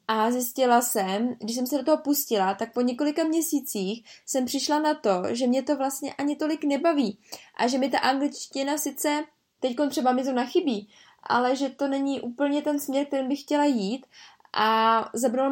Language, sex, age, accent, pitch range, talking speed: Czech, female, 20-39, native, 225-270 Hz, 185 wpm